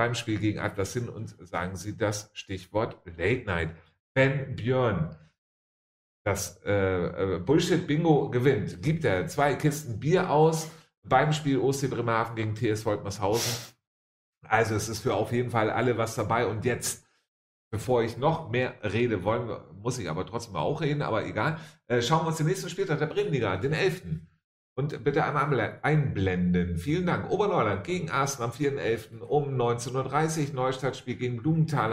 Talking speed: 160 wpm